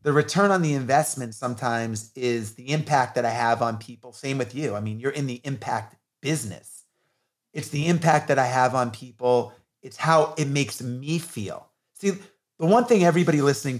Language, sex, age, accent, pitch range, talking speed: English, male, 30-49, American, 125-165 Hz, 190 wpm